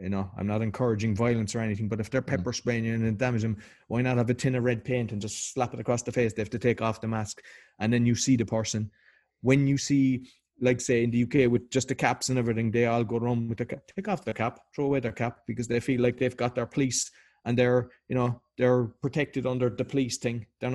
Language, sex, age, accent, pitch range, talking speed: English, male, 20-39, Irish, 115-135 Hz, 265 wpm